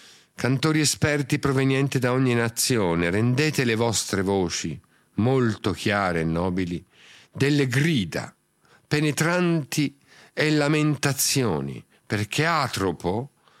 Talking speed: 95 wpm